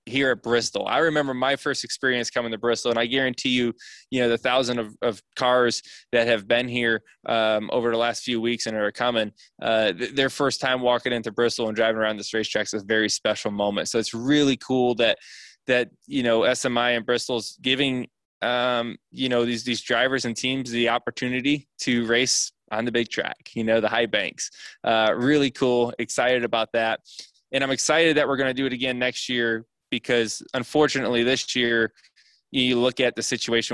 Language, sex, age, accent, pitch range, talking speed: English, male, 20-39, American, 115-125 Hz, 200 wpm